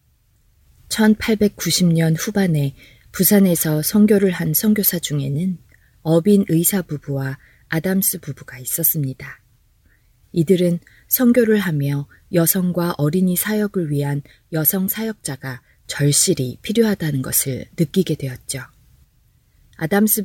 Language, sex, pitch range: Korean, female, 130-185 Hz